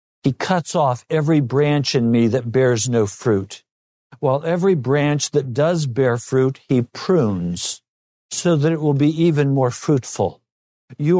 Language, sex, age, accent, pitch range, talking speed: English, male, 60-79, American, 130-195 Hz, 155 wpm